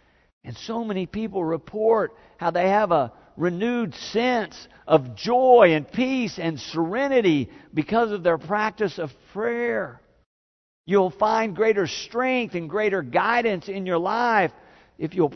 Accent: American